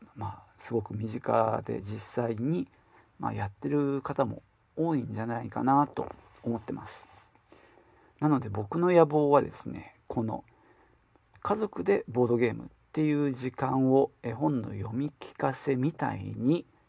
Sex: male